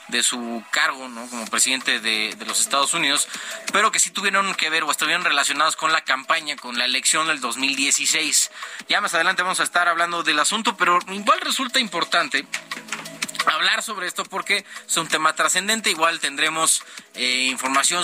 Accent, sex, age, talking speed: Mexican, male, 30-49, 175 wpm